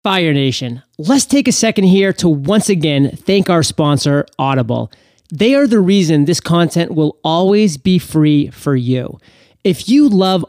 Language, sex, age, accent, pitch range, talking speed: English, male, 30-49, American, 140-190 Hz, 165 wpm